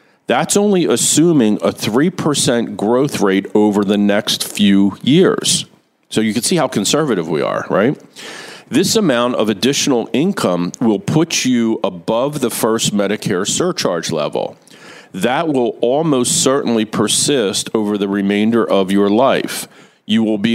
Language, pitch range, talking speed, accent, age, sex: English, 100-135 Hz, 145 wpm, American, 40-59, male